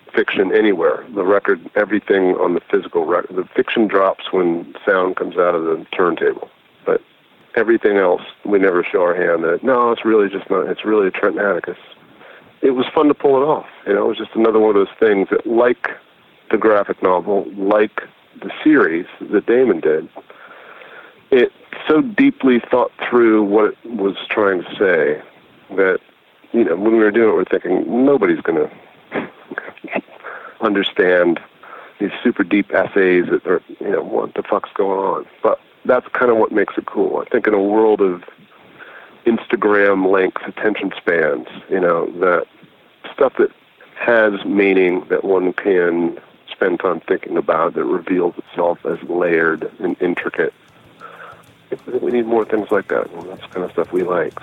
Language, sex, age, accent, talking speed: English, male, 40-59, American, 170 wpm